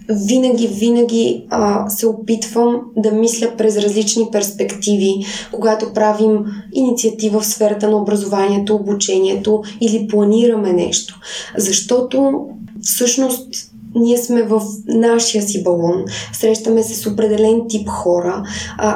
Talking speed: 115 wpm